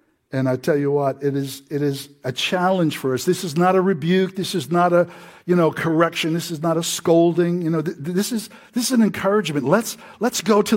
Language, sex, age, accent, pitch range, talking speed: English, male, 60-79, American, 145-180 Hz, 240 wpm